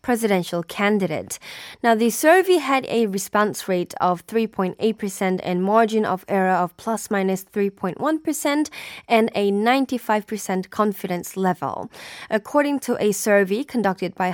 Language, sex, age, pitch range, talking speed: English, female, 20-39, 190-235 Hz, 125 wpm